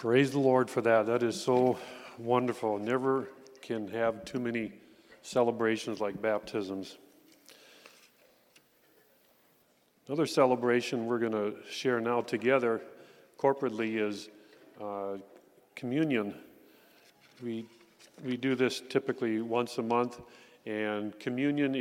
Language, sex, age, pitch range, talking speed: English, male, 40-59, 115-135 Hz, 105 wpm